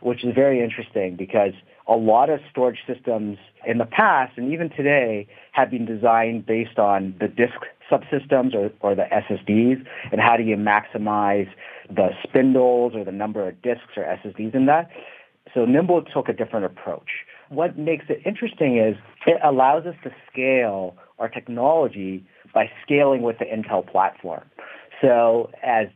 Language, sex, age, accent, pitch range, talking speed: English, male, 40-59, American, 100-130 Hz, 160 wpm